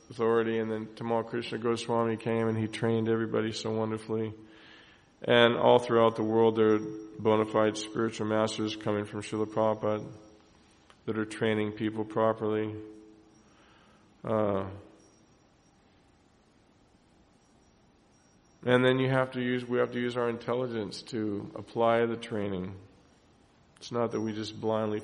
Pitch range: 110-115 Hz